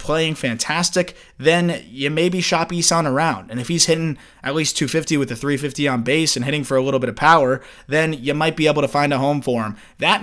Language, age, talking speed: English, 20-39, 235 wpm